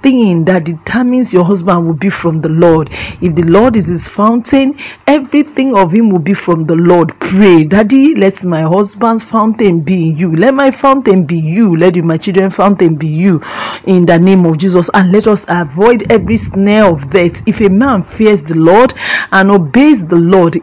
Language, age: English, 40-59